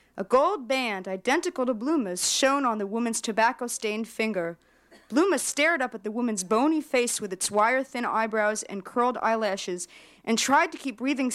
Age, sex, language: 40-59, female, English